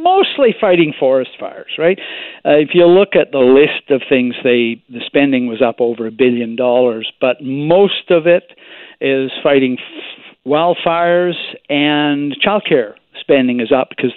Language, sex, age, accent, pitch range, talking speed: English, male, 60-79, American, 130-180 Hz, 155 wpm